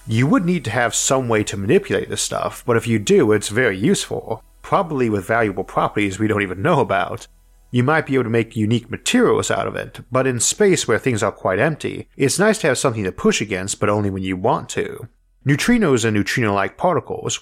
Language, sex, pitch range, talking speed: English, male, 100-135 Hz, 220 wpm